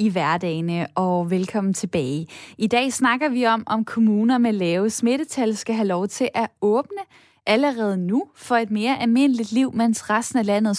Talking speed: 180 wpm